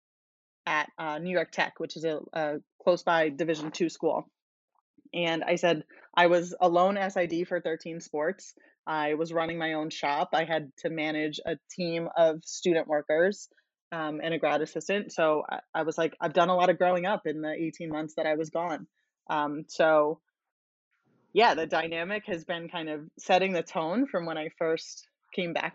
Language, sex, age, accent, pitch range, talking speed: English, female, 20-39, American, 155-175 Hz, 195 wpm